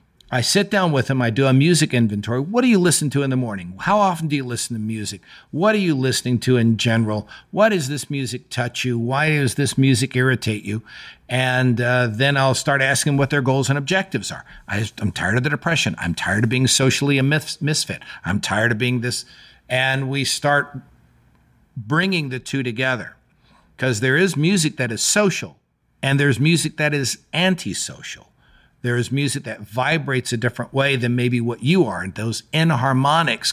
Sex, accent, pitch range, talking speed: male, American, 120-150 Hz, 200 wpm